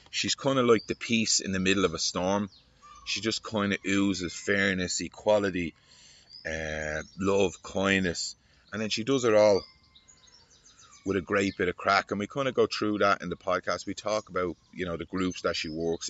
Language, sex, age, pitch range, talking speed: English, male, 30-49, 85-100 Hz, 200 wpm